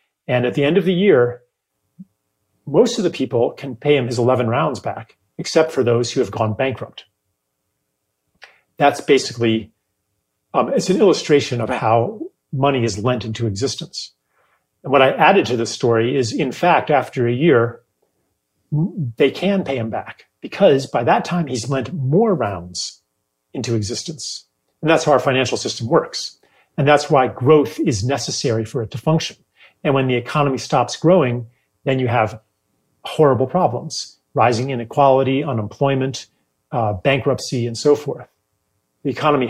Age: 40-59